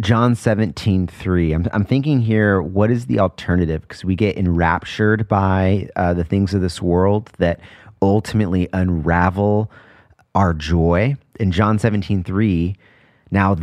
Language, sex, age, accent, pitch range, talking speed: English, male, 30-49, American, 85-105 Hz, 140 wpm